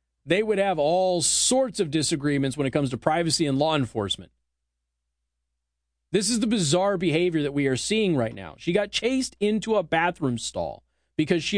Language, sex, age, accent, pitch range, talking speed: English, male, 30-49, American, 130-210 Hz, 180 wpm